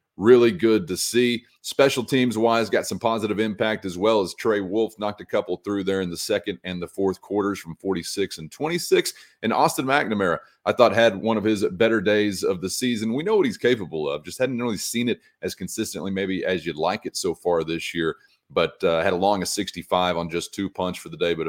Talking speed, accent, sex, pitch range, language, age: 230 wpm, American, male, 95-115 Hz, English, 30-49